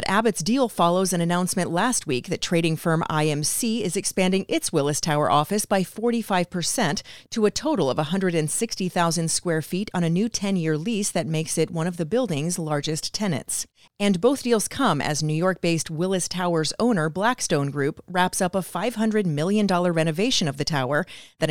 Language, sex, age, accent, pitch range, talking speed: English, female, 30-49, American, 160-205 Hz, 180 wpm